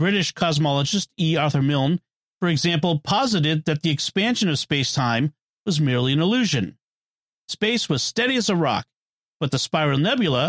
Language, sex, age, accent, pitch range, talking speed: English, male, 40-59, American, 140-195 Hz, 160 wpm